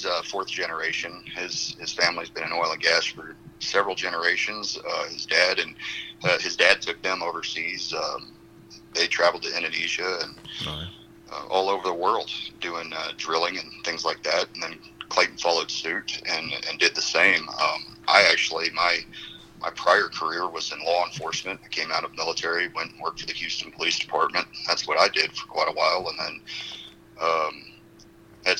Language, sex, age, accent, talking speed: English, male, 40-59, American, 185 wpm